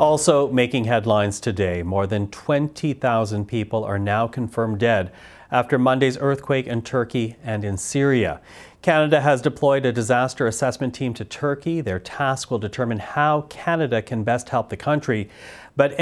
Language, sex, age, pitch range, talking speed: English, male, 40-59, 115-145 Hz, 155 wpm